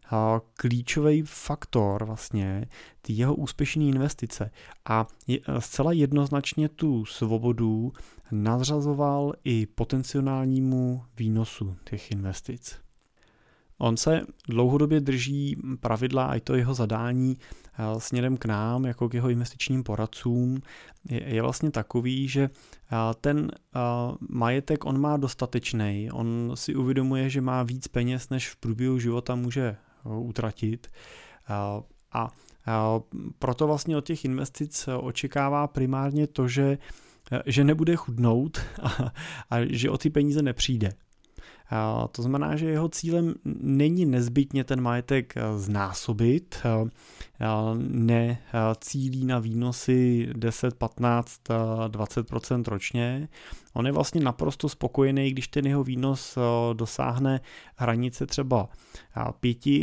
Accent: native